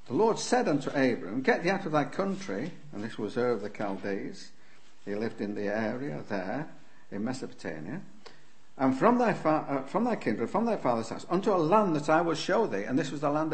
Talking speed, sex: 225 wpm, male